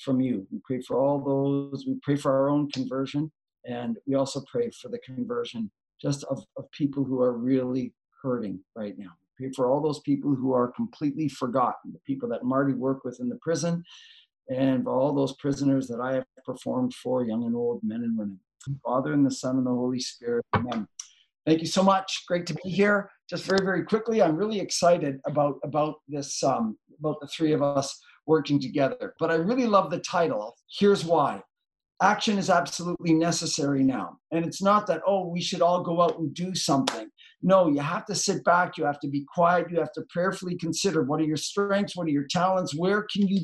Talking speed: 210 wpm